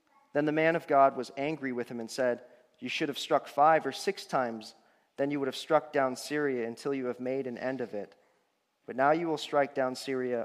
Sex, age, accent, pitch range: male, 40-59, American, 120-155 Hz